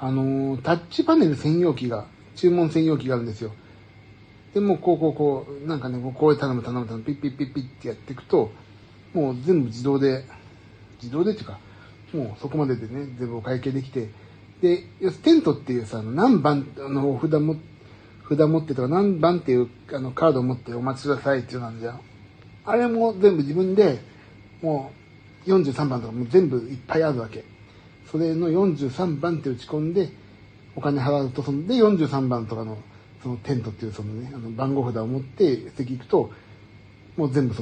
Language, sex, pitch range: Japanese, male, 110-160 Hz